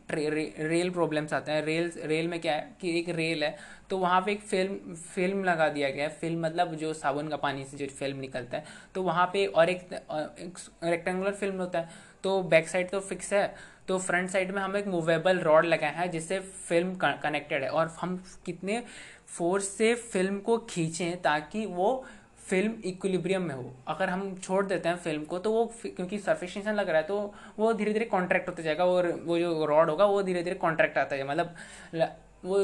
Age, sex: 20-39, male